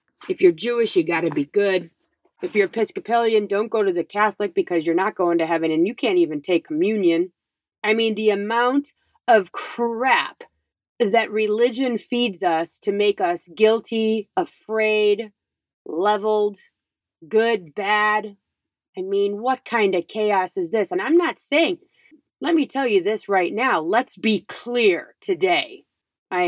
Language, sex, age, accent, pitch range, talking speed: English, female, 30-49, American, 185-275 Hz, 155 wpm